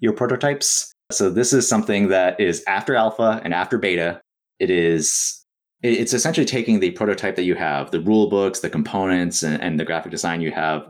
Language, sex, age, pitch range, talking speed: English, male, 30-49, 85-110 Hz, 195 wpm